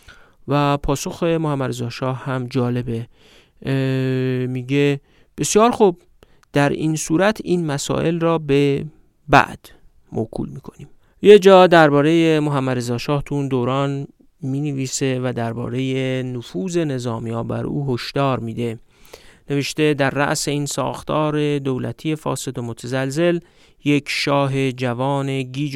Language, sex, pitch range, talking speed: Persian, male, 125-150 Hz, 115 wpm